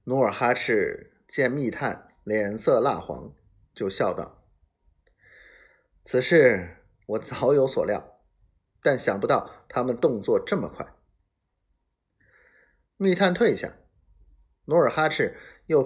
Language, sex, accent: Chinese, male, native